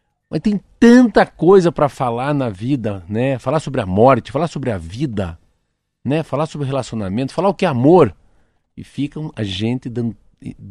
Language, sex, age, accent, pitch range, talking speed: Portuguese, male, 50-69, Brazilian, 110-155 Hz, 175 wpm